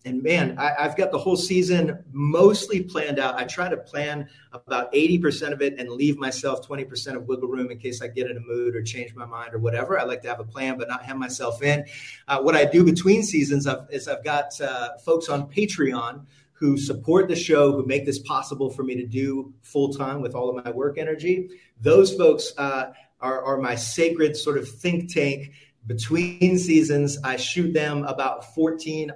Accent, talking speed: American, 210 wpm